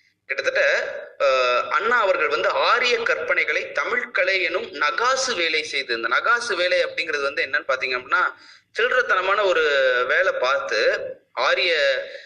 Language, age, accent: Tamil, 30-49, native